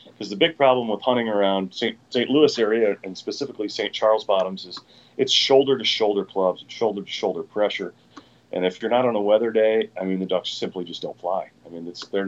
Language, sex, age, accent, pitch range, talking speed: English, male, 30-49, American, 95-120 Hz, 225 wpm